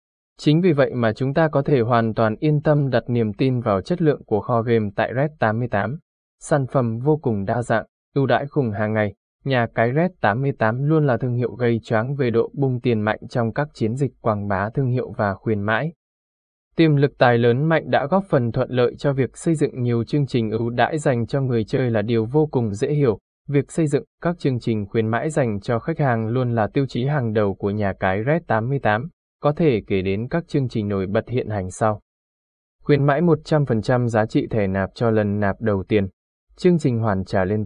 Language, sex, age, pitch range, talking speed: Vietnamese, male, 20-39, 105-140 Hz, 225 wpm